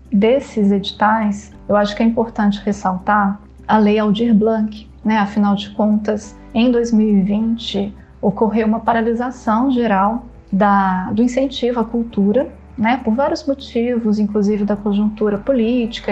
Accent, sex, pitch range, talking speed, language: Brazilian, female, 205-235 Hz, 130 wpm, Portuguese